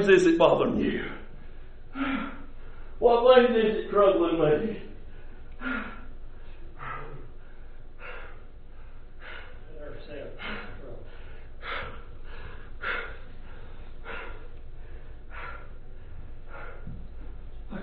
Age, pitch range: 60-79, 130-165 Hz